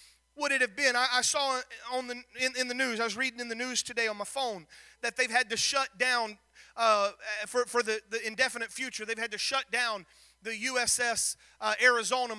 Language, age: English, 30-49